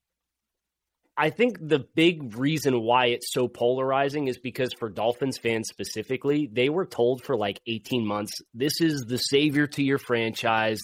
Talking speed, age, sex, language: 160 wpm, 30-49, male, English